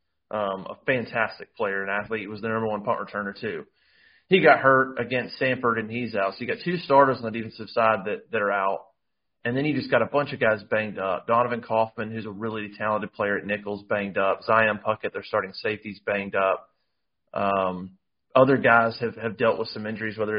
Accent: American